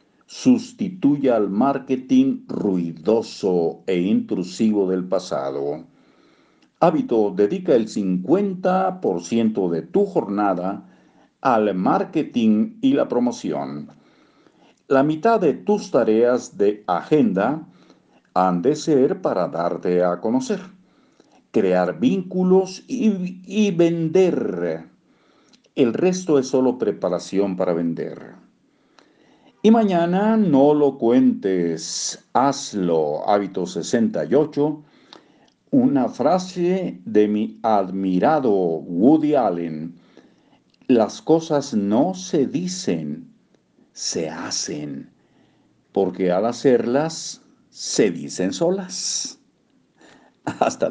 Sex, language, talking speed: male, Spanish, 90 wpm